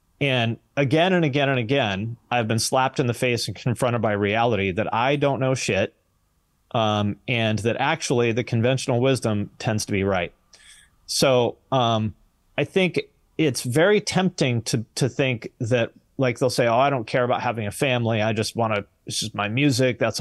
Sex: male